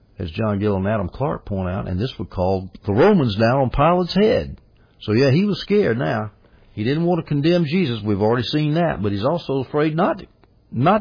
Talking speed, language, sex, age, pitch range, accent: 215 wpm, English, male, 60-79, 100-140 Hz, American